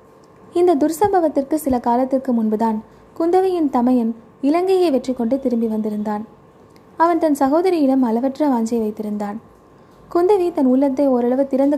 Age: 20-39